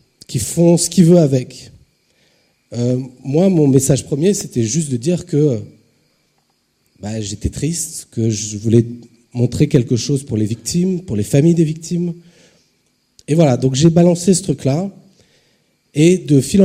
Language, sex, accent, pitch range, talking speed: French, male, French, 120-160 Hz, 155 wpm